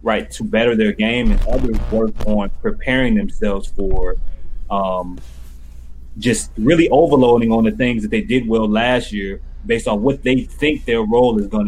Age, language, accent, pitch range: 20-39, English, American, 100-135 Hz